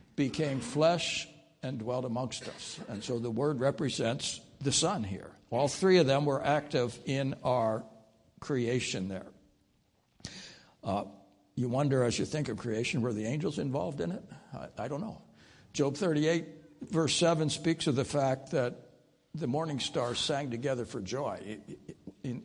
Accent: American